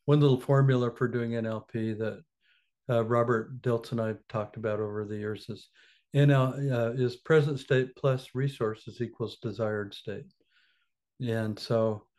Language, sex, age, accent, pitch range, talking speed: English, male, 60-79, American, 115-135 Hz, 150 wpm